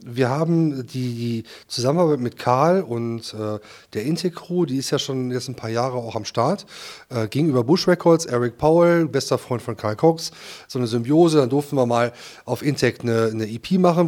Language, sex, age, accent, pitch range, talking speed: German, male, 30-49, German, 125-165 Hz, 195 wpm